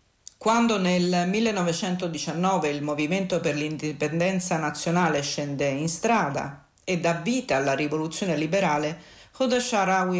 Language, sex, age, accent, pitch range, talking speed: Italian, female, 40-59, native, 155-195 Hz, 110 wpm